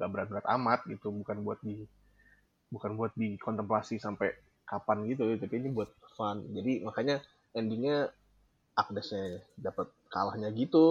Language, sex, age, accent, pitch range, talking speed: Indonesian, male, 20-39, native, 105-130 Hz, 140 wpm